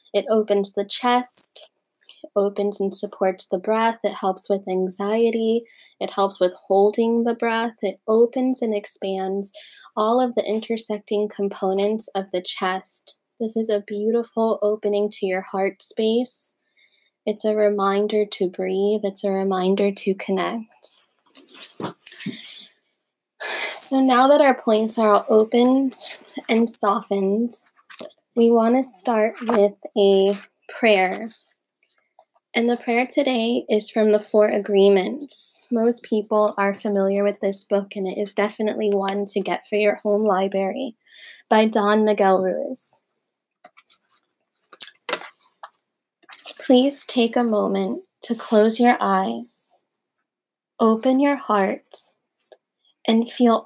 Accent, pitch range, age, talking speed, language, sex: American, 200-230 Hz, 20-39, 125 wpm, English, female